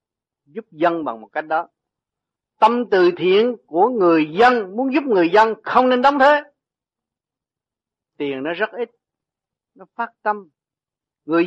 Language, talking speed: Vietnamese, 145 wpm